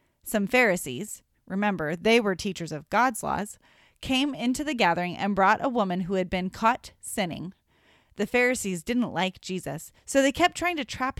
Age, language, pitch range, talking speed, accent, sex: 30-49, English, 190-260 Hz, 175 wpm, American, female